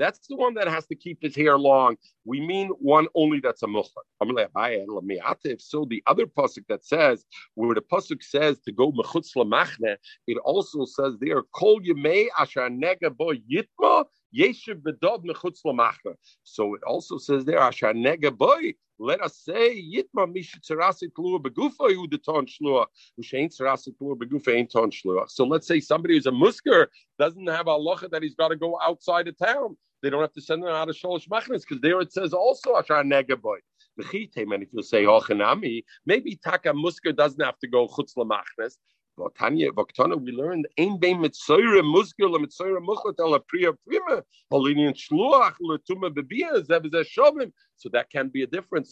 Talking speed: 120 wpm